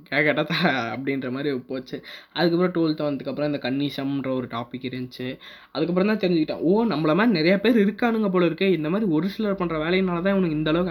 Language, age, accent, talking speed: Tamil, 20-39, native, 170 wpm